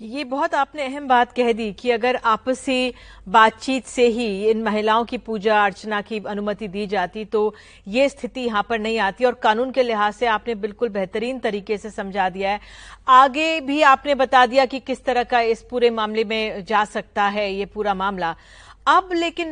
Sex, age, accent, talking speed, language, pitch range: female, 40-59, native, 195 wpm, Hindi, 220-275 Hz